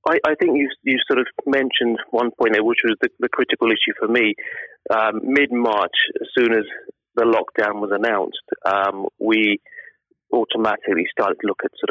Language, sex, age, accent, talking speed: English, male, 30-49, British, 185 wpm